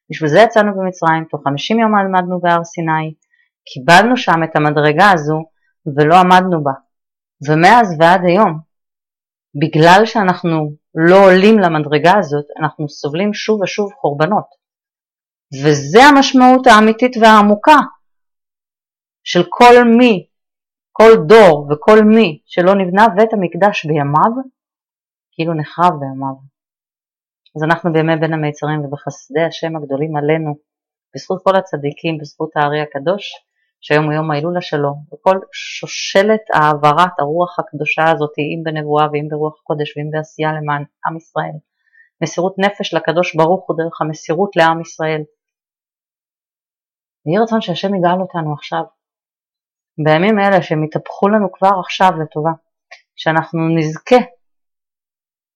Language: Hebrew